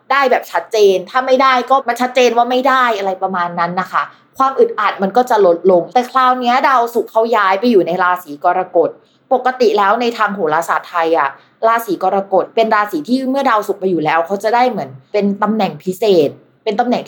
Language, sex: Thai, female